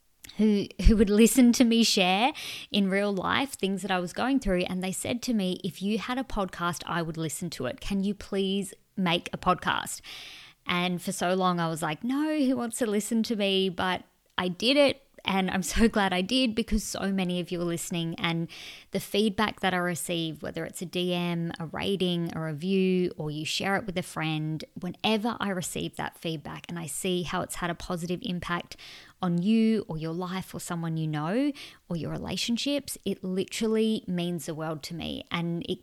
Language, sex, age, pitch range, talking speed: English, female, 20-39, 175-215 Hz, 210 wpm